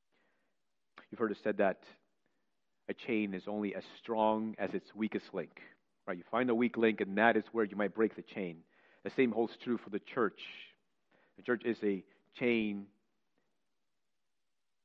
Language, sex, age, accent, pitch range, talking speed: English, male, 40-59, American, 100-110 Hz, 170 wpm